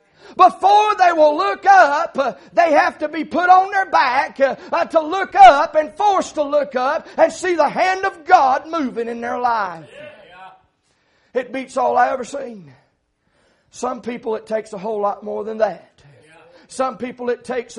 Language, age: English, 40-59